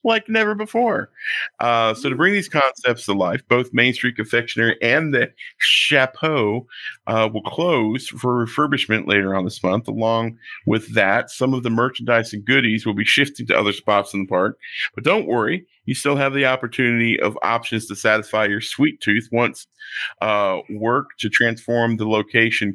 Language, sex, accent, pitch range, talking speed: English, male, American, 105-130 Hz, 175 wpm